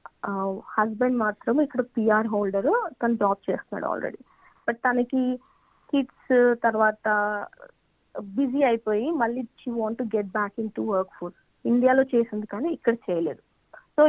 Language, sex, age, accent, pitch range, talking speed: Telugu, female, 20-39, native, 205-260 Hz, 130 wpm